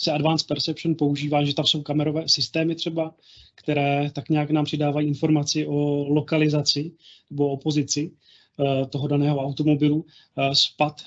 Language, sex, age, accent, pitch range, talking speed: Czech, male, 30-49, native, 140-155 Hz, 145 wpm